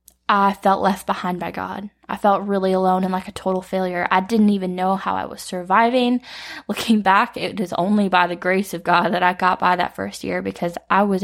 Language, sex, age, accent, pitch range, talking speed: English, female, 10-29, American, 185-205 Hz, 230 wpm